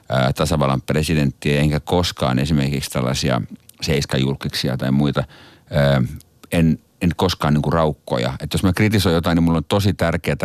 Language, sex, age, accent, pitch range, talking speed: Finnish, male, 50-69, native, 75-100 Hz, 140 wpm